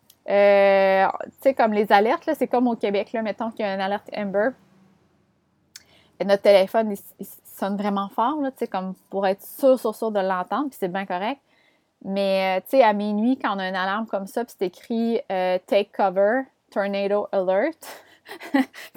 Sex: female